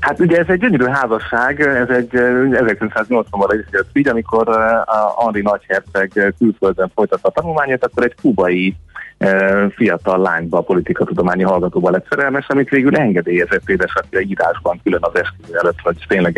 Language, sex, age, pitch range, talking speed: Hungarian, male, 30-49, 90-115 Hz, 150 wpm